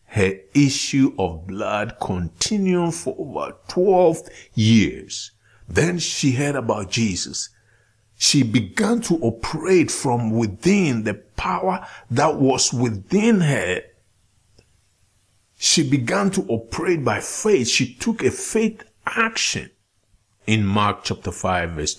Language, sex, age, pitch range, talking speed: English, male, 50-69, 105-165 Hz, 115 wpm